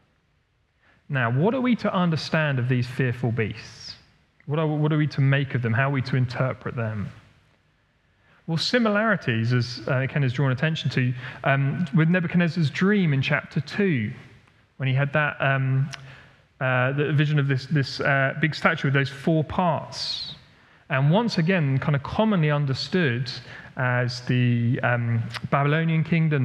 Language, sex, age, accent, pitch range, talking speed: English, male, 40-59, British, 130-160 Hz, 155 wpm